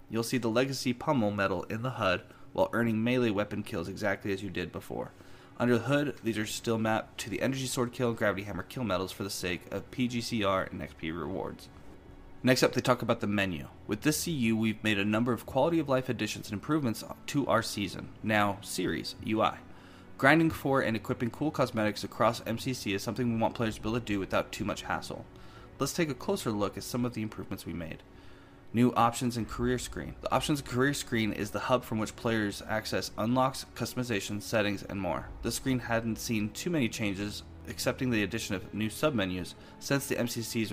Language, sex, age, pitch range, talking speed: English, male, 20-39, 100-125 Hz, 210 wpm